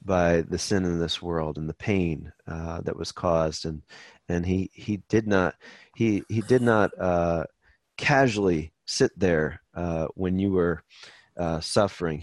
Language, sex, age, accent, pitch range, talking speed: English, male, 40-59, American, 85-105 Hz, 160 wpm